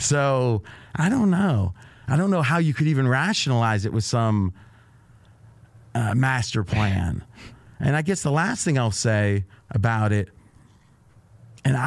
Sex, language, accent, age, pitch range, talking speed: male, English, American, 40-59, 110-140 Hz, 145 wpm